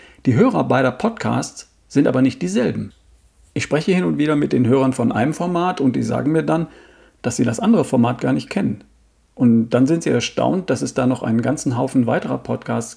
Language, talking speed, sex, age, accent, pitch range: German, 215 wpm, male, 50-69, German, 115-160 Hz